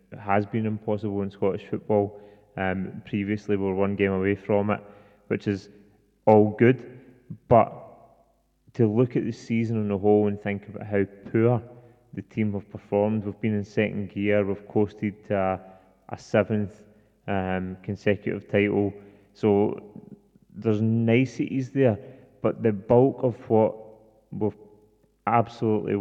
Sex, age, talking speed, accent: male, 20-39, 145 wpm, British